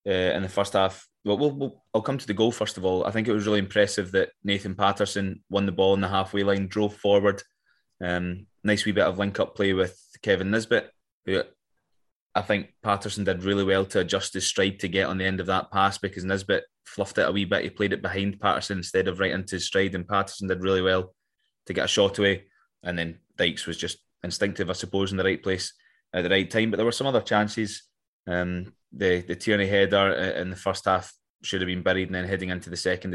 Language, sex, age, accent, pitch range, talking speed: English, male, 20-39, British, 90-100 Hz, 245 wpm